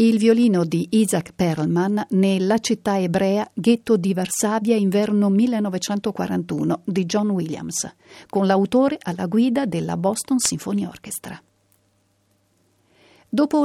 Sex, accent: female, native